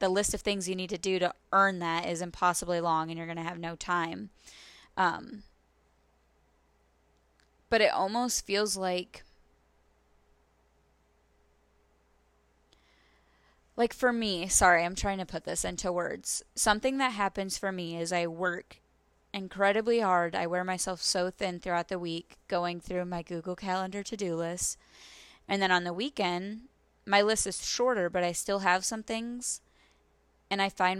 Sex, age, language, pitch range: female, 10-29, English, 170-195 Hz